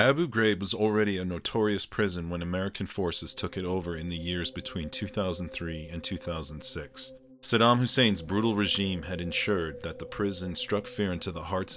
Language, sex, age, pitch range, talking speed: English, male, 40-59, 85-100 Hz, 175 wpm